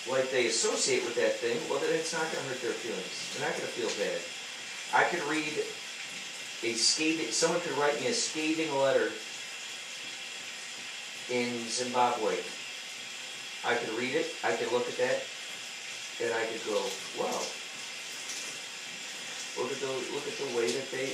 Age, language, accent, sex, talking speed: 40-59, English, American, male, 160 wpm